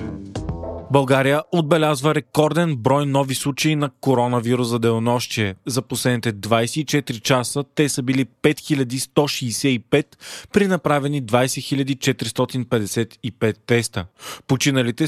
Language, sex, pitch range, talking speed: Bulgarian, male, 120-145 Hz, 90 wpm